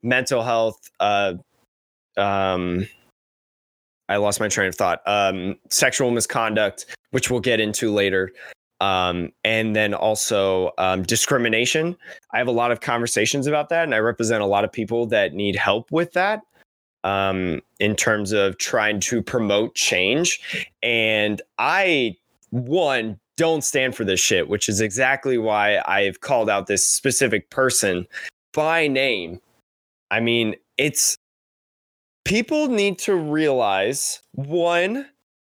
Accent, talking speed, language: American, 135 wpm, English